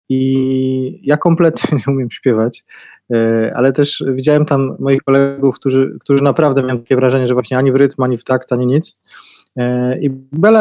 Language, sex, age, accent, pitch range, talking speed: Polish, male, 20-39, native, 125-145 Hz, 170 wpm